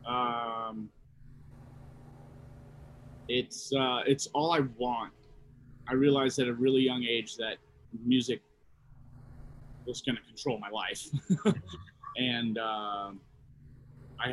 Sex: male